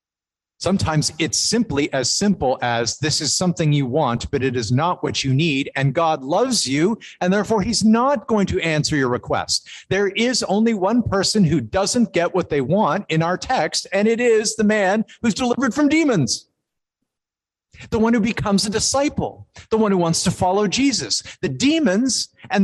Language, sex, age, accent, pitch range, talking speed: English, male, 50-69, American, 140-210 Hz, 185 wpm